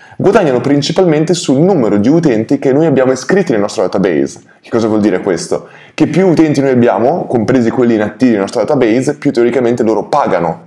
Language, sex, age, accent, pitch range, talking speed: Italian, male, 20-39, native, 110-140 Hz, 185 wpm